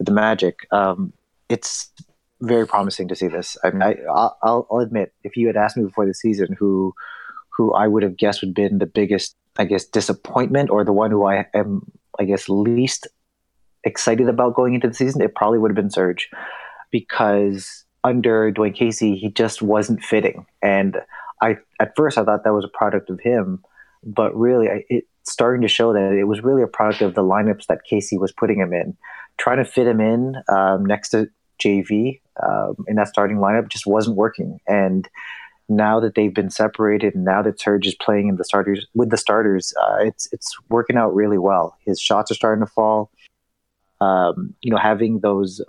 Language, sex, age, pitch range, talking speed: English, male, 30-49, 100-115 Hz, 200 wpm